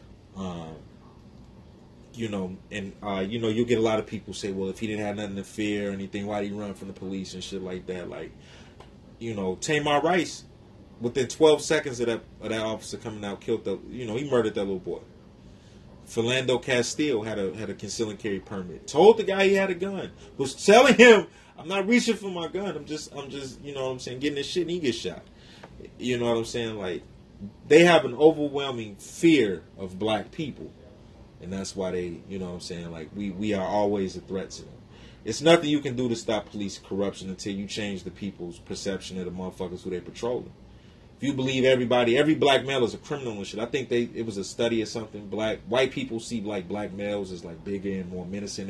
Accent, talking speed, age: American, 230 wpm, 30-49